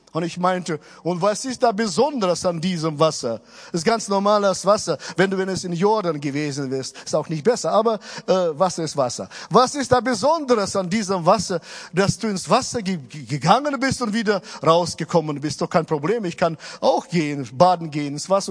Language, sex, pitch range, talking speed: German, male, 145-215 Hz, 200 wpm